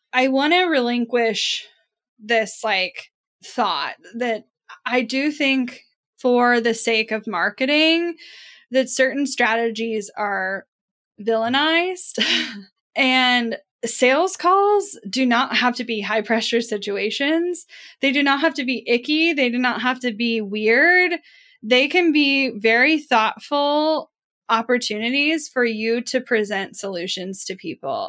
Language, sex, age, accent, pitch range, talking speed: English, female, 10-29, American, 210-275 Hz, 125 wpm